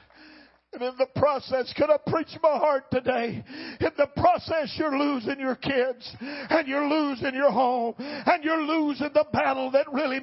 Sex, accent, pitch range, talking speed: male, American, 255-295 Hz, 170 wpm